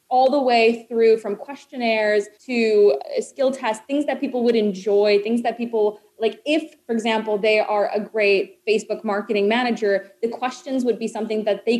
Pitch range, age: 210-270 Hz, 20-39